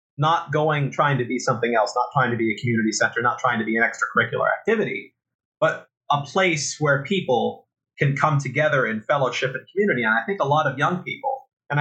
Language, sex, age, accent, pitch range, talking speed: English, male, 30-49, American, 120-170 Hz, 215 wpm